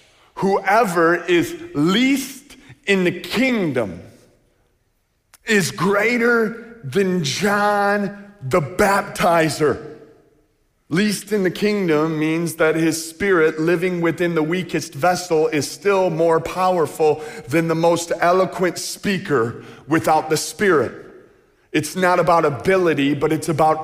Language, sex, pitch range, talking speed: English, male, 115-170 Hz, 110 wpm